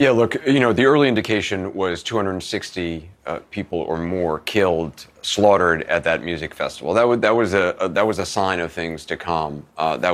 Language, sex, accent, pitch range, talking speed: English, male, American, 85-100 Hz, 205 wpm